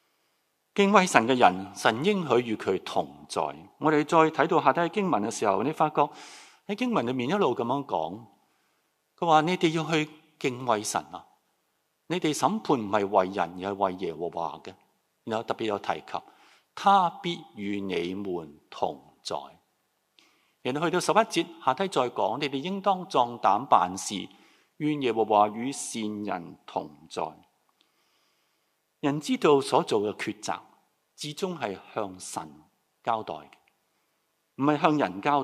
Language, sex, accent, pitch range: Chinese, male, native, 105-165 Hz